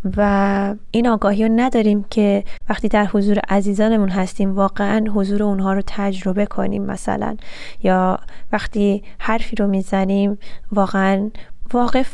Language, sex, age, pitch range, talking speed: Persian, female, 20-39, 195-215 Hz, 125 wpm